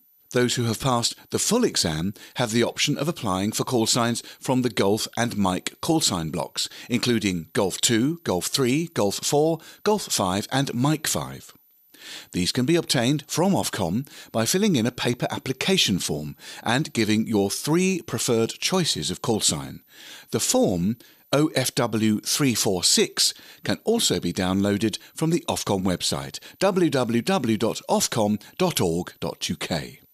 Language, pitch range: English, 105-155 Hz